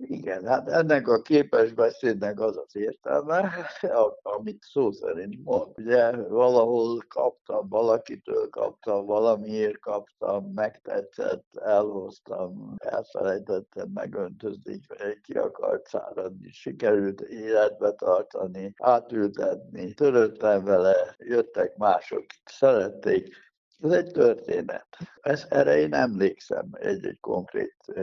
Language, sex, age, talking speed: Hungarian, male, 60-79, 95 wpm